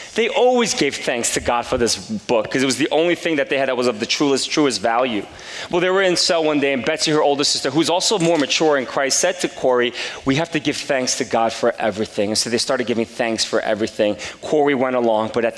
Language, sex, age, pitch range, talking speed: English, male, 30-49, 115-150 Hz, 260 wpm